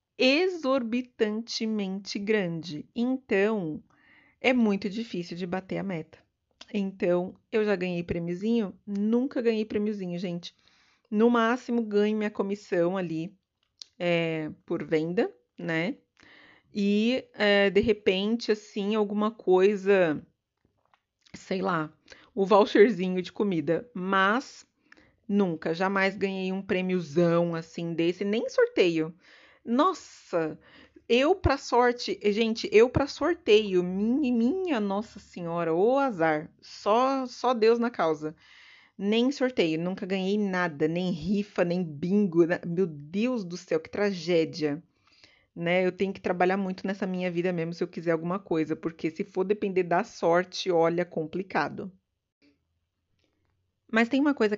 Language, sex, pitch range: Portuguese, female, 175-225 Hz